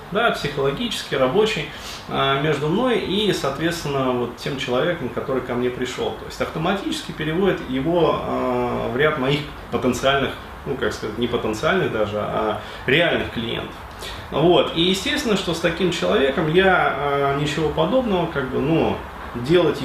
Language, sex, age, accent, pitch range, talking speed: Russian, male, 30-49, native, 125-175 Hz, 150 wpm